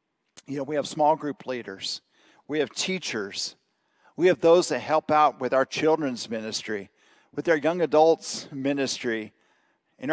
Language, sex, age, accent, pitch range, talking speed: English, male, 50-69, American, 140-180 Hz, 155 wpm